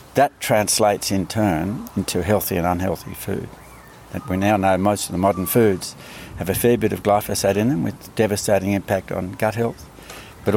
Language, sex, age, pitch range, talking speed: English, male, 60-79, 90-105 Hz, 185 wpm